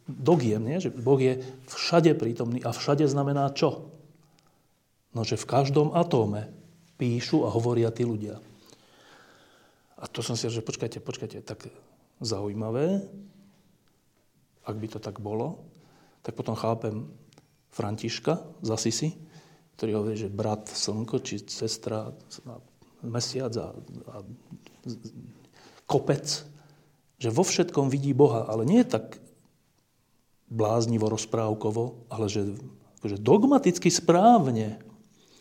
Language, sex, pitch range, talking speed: Slovak, male, 115-155 Hz, 115 wpm